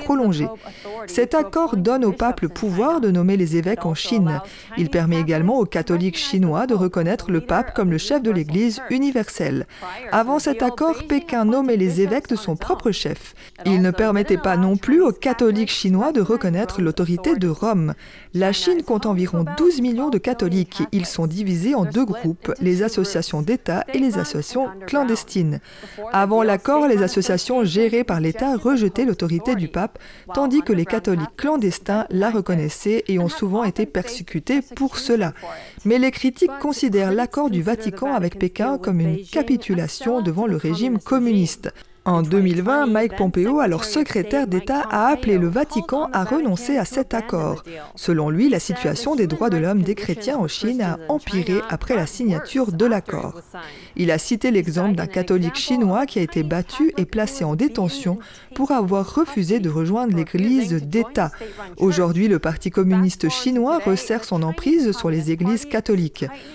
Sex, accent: female, French